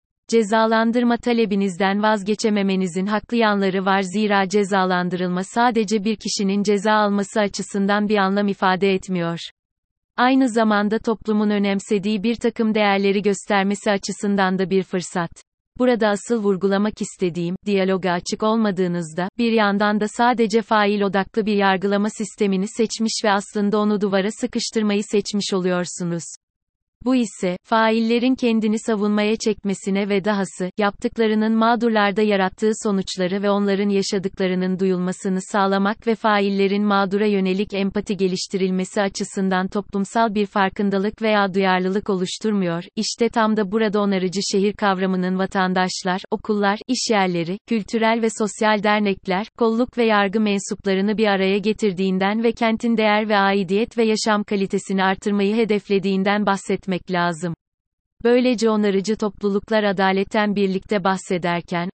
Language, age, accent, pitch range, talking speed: Turkish, 30-49, native, 190-215 Hz, 120 wpm